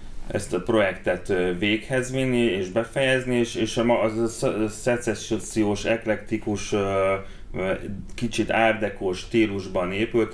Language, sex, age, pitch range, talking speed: Hungarian, male, 30-49, 95-115 Hz, 110 wpm